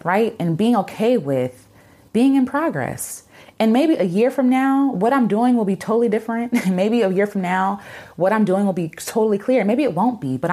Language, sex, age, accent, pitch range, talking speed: English, female, 20-39, American, 145-230 Hz, 215 wpm